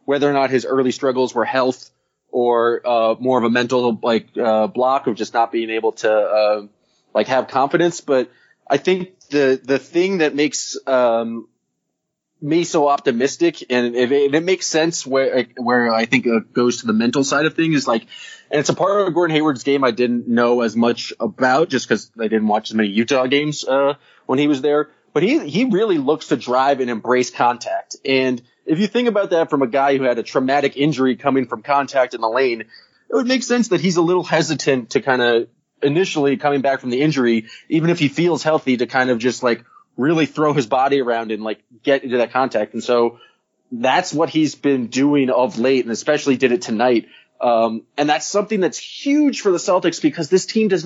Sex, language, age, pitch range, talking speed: male, English, 20-39, 120-160 Hz, 220 wpm